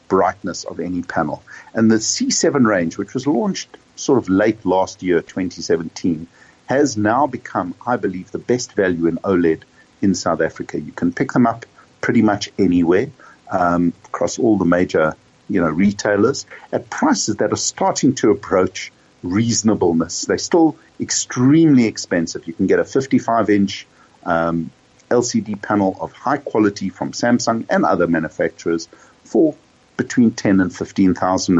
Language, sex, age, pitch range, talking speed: English, male, 50-69, 90-120 Hz, 145 wpm